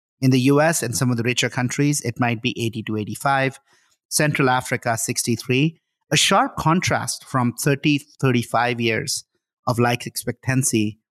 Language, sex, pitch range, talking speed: English, male, 120-155 Hz, 150 wpm